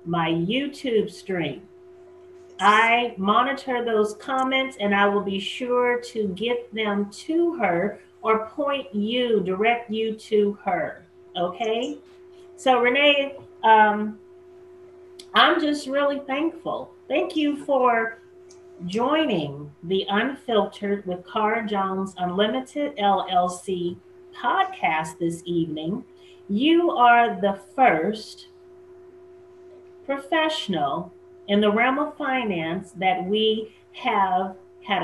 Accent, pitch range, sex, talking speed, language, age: American, 195-315 Hz, female, 105 wpm, English, 40-59